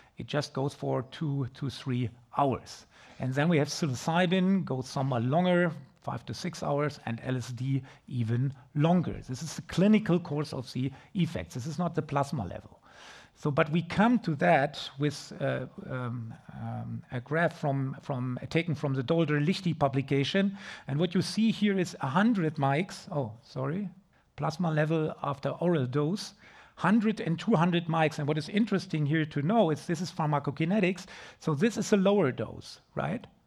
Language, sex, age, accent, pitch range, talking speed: English, male, 50-69, German, 140-175 Hz, 170 wpm